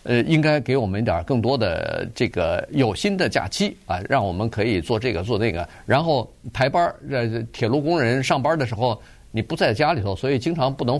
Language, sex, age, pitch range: Chinese, male, 50-69, 105-150 Hz